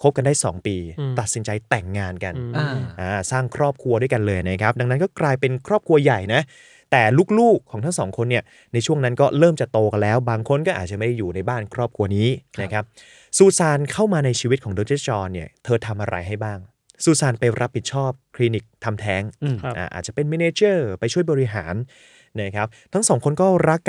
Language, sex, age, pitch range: Thai, male, 20-39, 110-145 Hz